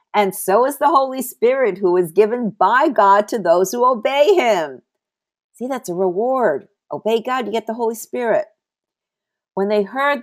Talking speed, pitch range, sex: 175 wpm, 170-255 Hz, female